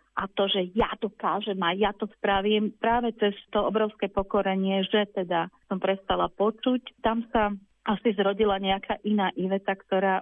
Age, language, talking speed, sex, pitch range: 40-59, Slovak, 165 wpm, female, 185-210 Hz